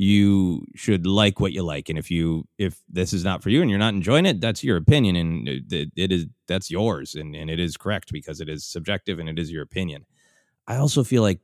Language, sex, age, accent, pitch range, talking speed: English, male, 30-49, American, 95-125 Hz, 245 wpm